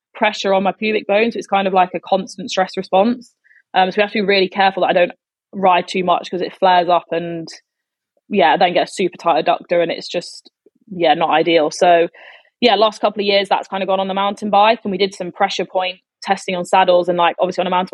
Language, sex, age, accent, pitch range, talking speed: English, female, 20-39, British, 175-200 Hz, 250 wpm